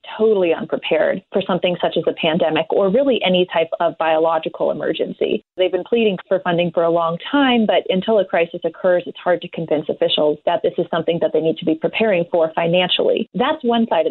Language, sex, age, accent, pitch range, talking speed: English, female, 30-49, American, 170-225 Hz, 215 wpm